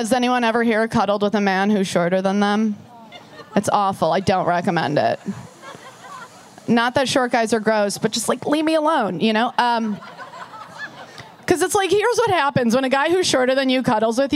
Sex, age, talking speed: female, 20-39, 200 wpm